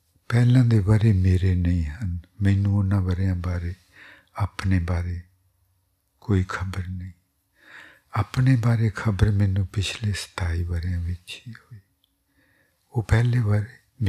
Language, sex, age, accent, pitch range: English, male, 60-79, Indian, 90-105 Hz